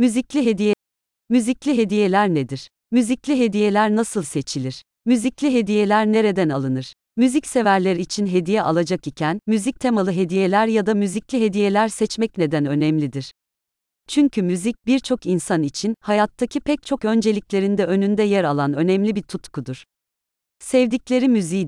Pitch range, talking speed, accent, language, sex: 170-225 Hz, 125 wpm, native, Turkish, female